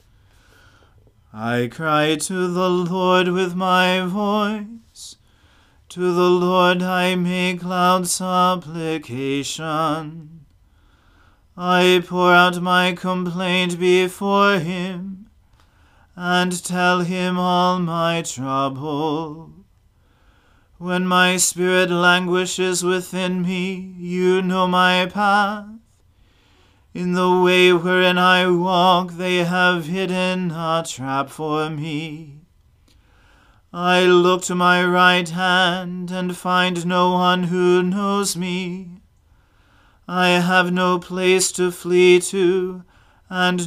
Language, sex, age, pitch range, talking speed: English, male, 30-49, 155-180 Hz, 100 wpm